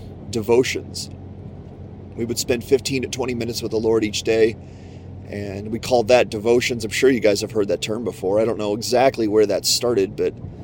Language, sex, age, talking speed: English, male, 30-49, 195 wpm